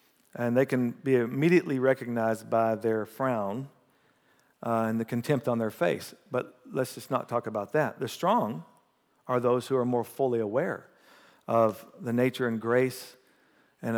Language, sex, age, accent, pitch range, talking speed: English, male, 50-69, American, 110-130 Hz, 165 wpm